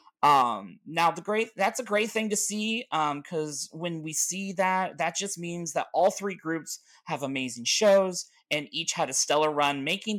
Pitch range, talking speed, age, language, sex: 150-195 Hz, 195 wpm, 30-49, English, male